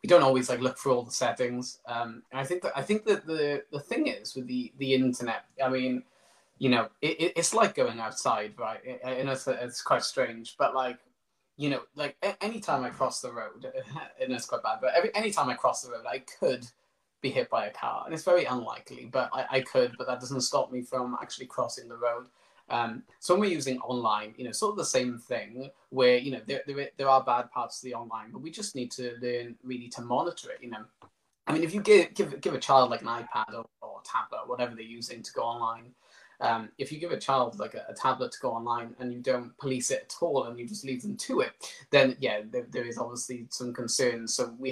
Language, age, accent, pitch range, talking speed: English, 20-39, British, 125-170 Hz, 245 wpm